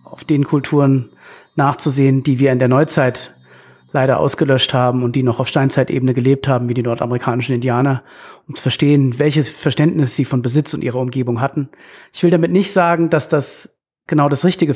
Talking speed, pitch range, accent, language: 185 wpm, 135-160 Hz, German, German